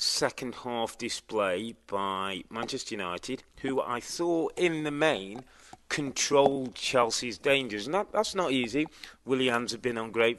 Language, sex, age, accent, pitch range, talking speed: English, male, 30-49, British, 110-155 Hz, 140 wpm